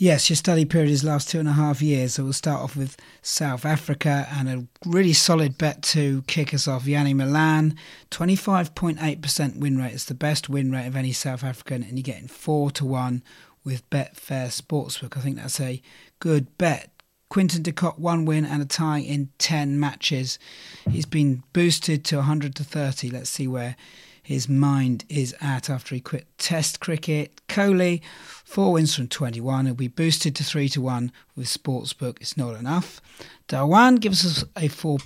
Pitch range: 130-155 Hz